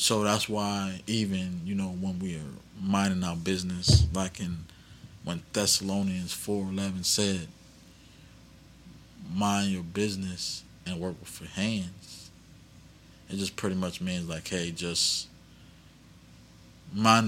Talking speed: 120 wpm